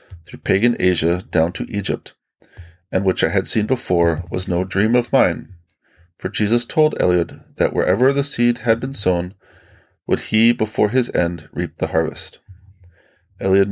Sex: male